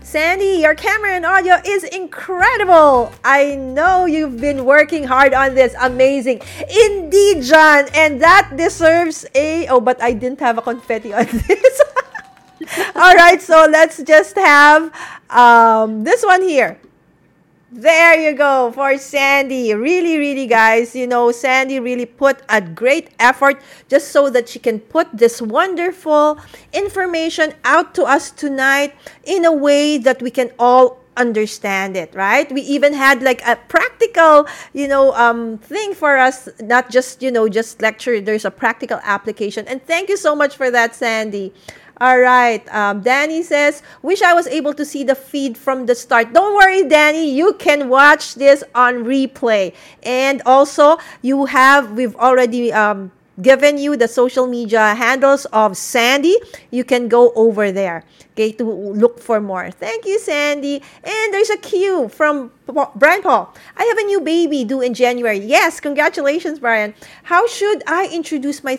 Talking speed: 160 wpm